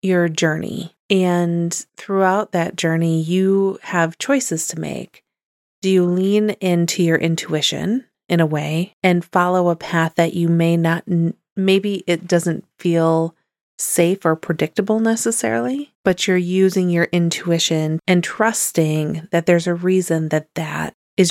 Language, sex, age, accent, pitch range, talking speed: English, female, 30-49, American, 165-190 Hz, 140 wpm